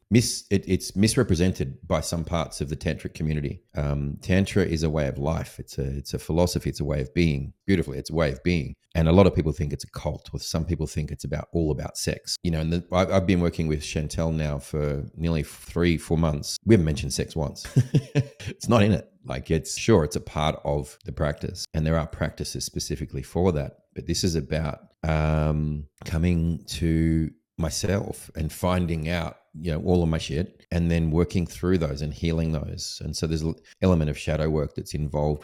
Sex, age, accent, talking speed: male, 30-49, Australian, 220 wpm